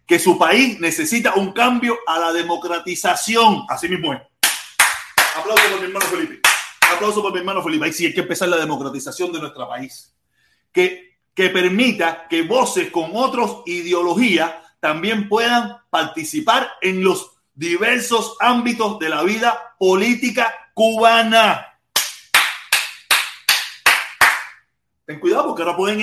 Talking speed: 130 wpm